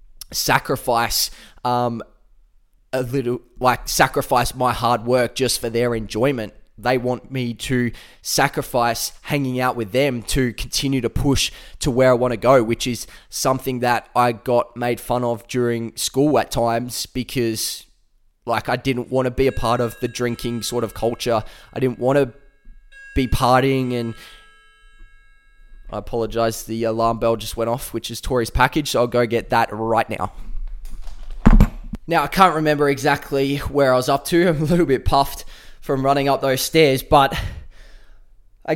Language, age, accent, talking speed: English, 20-39, Australian, 165 wpm